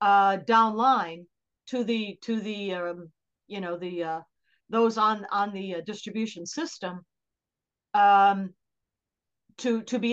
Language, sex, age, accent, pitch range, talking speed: English, female, 50-69, American, 190-235 Hz, 130 wpm